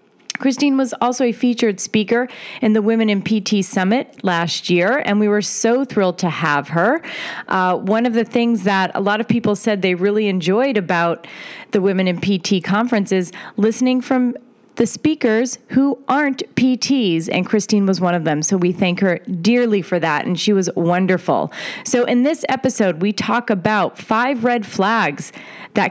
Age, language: 30-49, English